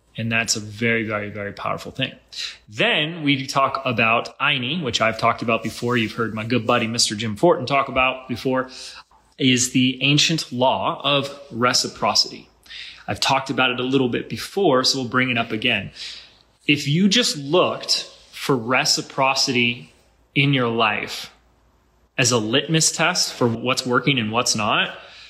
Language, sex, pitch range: English, male, 120-145 Hz